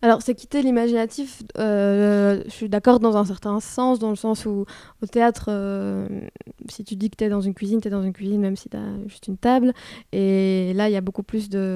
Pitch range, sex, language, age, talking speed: 200-225 Hz, female, French, 20-39, 245 wpm